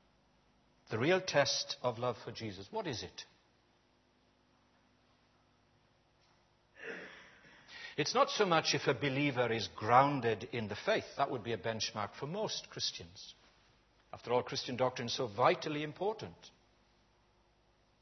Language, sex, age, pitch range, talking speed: English, male, 60-79, 115-160 Hz, 125 wpm